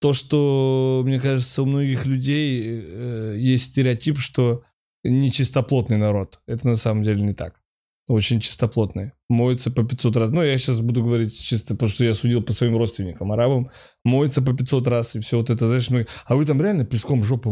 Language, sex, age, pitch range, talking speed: Russian, male, 20-39, 110-135 Hz, 190 wpm